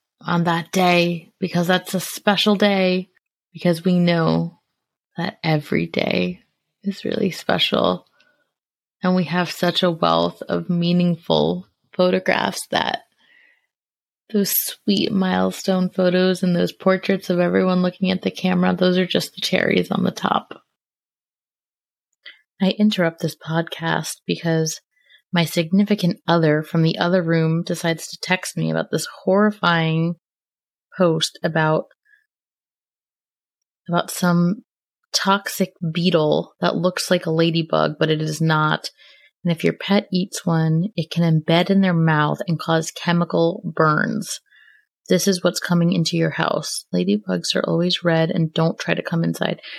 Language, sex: English, female